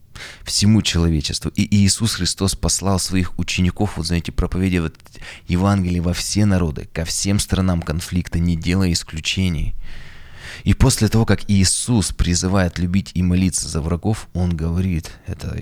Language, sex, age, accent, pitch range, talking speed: Russian, male, 20-39, native, 80-100 Hz, 140 wpm